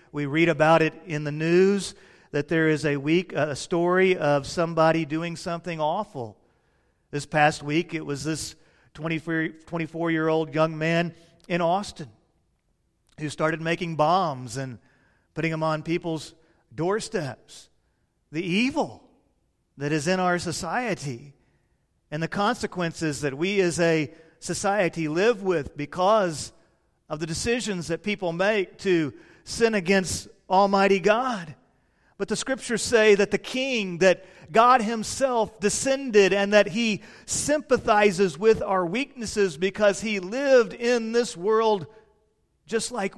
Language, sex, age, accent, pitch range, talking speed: English, male, 40-59, American, 155-210 Hz, 135 wpm